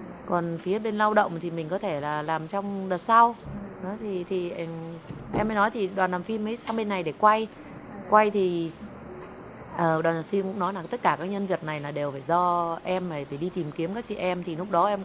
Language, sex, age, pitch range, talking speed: Vietnamese, female, 20-39, 170-210 Hz, 240 wpm